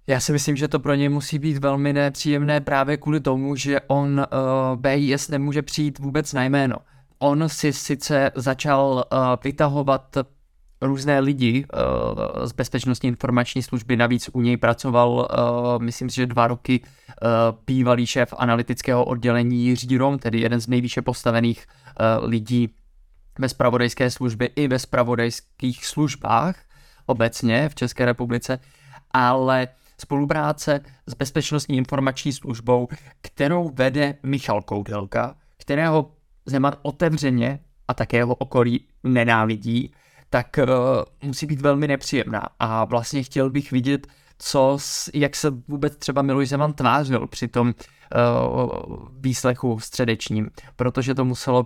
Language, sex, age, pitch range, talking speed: Czech, male, 20-39, 120-140 Hz, 125 wpm